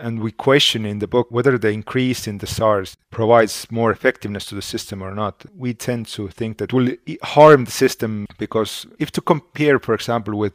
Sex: male